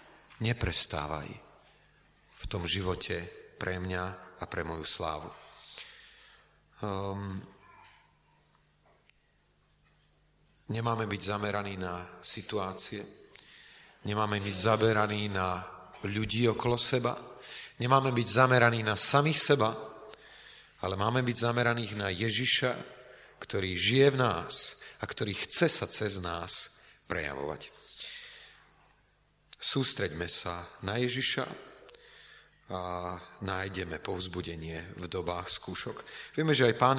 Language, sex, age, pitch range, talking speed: Slovak, male, 40-59, 95-135 Hz, 95 wpm